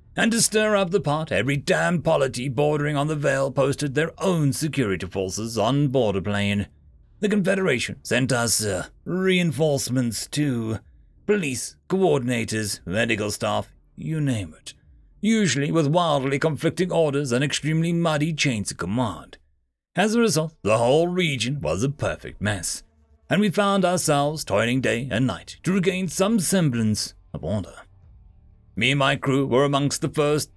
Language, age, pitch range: English, 40-59, 110-170 Hz